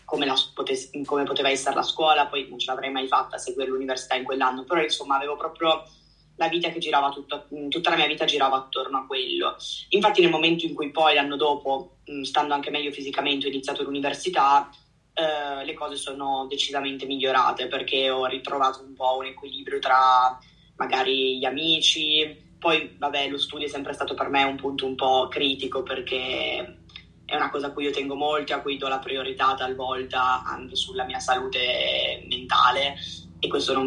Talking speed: 180 wpm